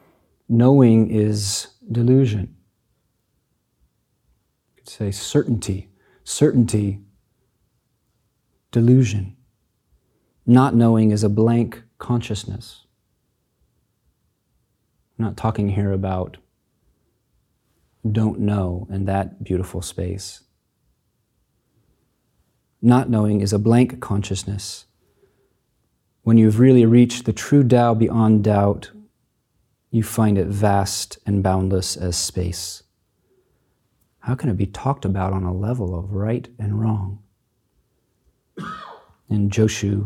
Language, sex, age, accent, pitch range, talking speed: English, male, 40-59, American, 95-120 Hz, 95 wpm